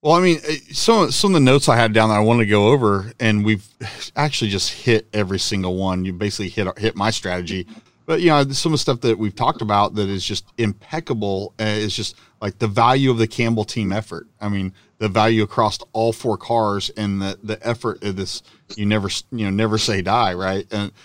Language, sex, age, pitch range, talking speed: English, male, 40-59, 105-130 Hz, 230 wpm